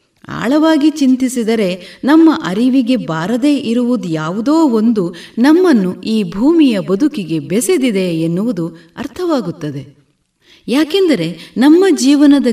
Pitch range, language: 180-285 Hz, Kannada